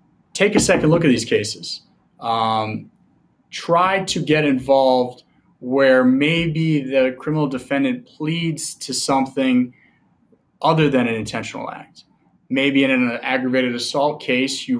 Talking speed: 130 wpm